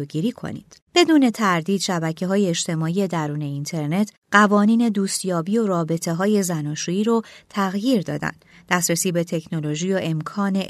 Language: Persian